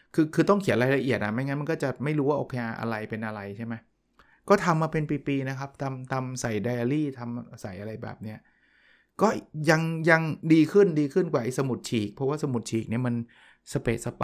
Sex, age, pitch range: male, 20-39, 120-150 Hz